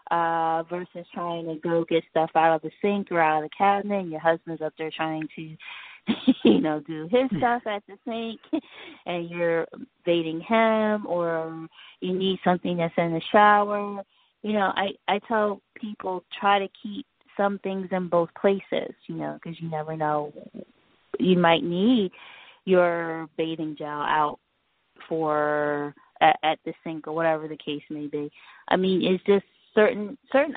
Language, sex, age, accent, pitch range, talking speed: English, female, 20-39, American, 160-190 Hz, 170 wpm